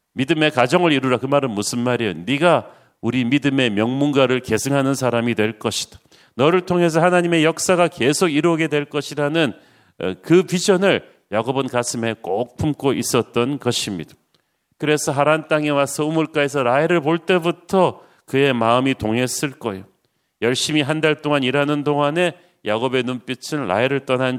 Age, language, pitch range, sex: 40-59, Korean, 125-160 Hz, male